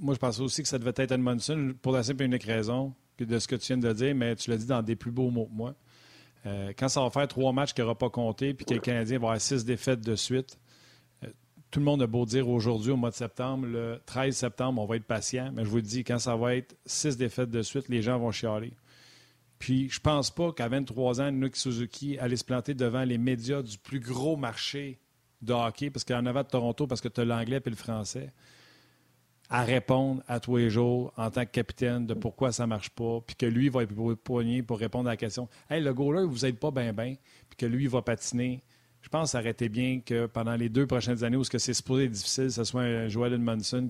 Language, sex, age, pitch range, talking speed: French, male, 40-59, 115-135 Hz, 255 wpm